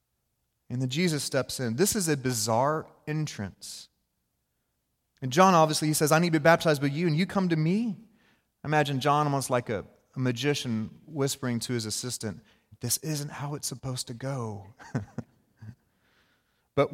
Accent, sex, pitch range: American, male, 125-160 Hz